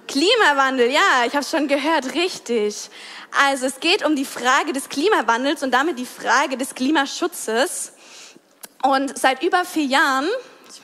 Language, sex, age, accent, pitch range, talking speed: German, female, 20-39, German, 250-320 Hz, 155 wpm